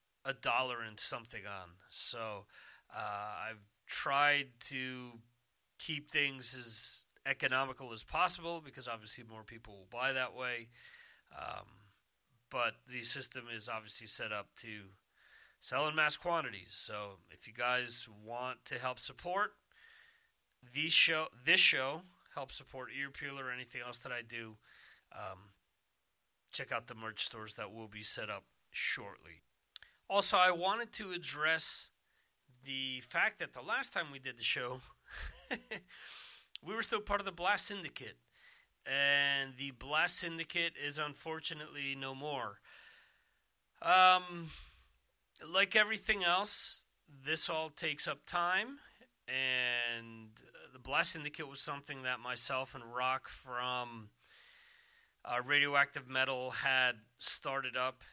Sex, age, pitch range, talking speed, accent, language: male, 40-59, 120-160 Hz, 130 wpm, American, English